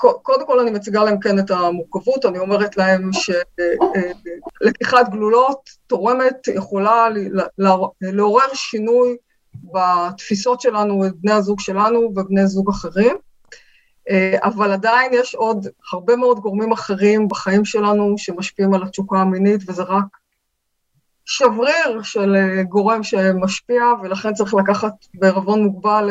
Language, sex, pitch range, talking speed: Hebrew, female, 190-225 Hz, 115 wpm